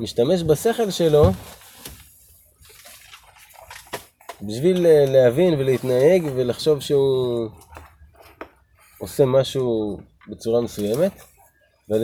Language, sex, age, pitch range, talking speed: Hebrew, male, 20-39, 105-155 Hz, 65 wpm